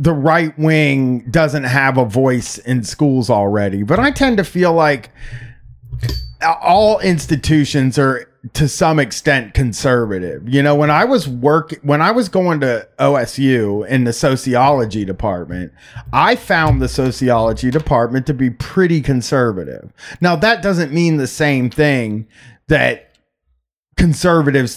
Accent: American